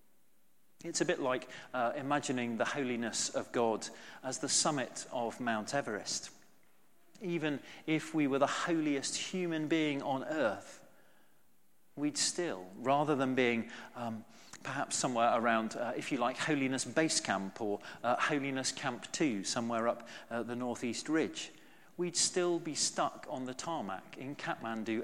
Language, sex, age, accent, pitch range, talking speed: English, male, 40-59, British, 130-170 Hz, 150 wpm